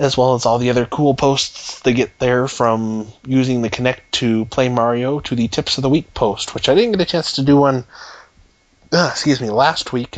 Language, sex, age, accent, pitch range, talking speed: English, male, 20-39, American, 110-135 Hz, 230 wpm